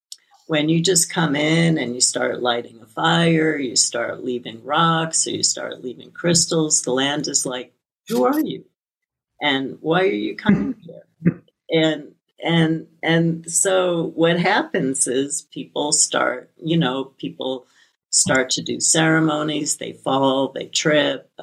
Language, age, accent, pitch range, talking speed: English, 50-69, American, 130-165 Hz, 150 wpm